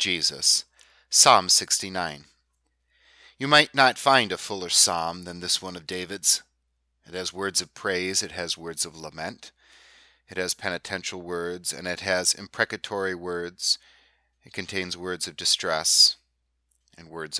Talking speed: 140 wpm